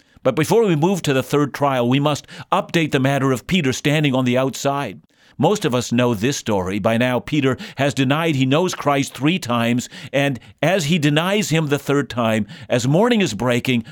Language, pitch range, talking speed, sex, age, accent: English, 120-150 Hz, 205 wpm, male, 50-69, American